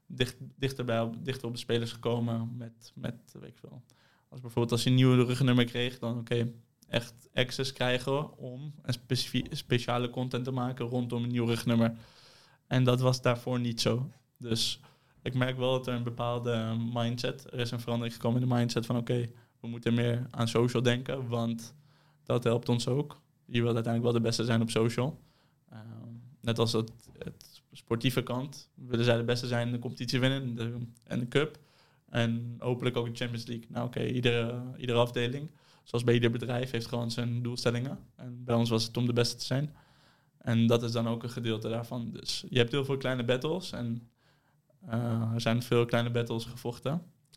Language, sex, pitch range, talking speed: Dutch, male, 115-130 Hz, 195 wpm